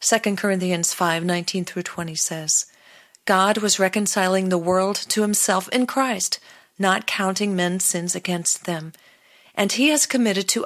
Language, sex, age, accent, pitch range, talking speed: English, female, 40-59, American, 175-225 Hz, 150 wpm